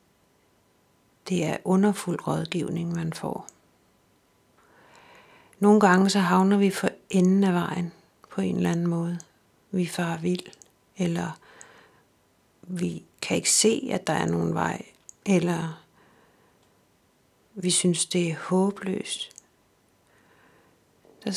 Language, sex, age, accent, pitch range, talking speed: Danish, female, 60-79, native, 170-195 Hz, 110 wpm